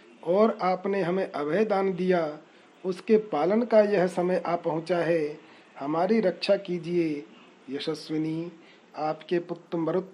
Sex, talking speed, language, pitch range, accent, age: male, 120 wpm, Hindi, 165-195 Hz, native, 40-59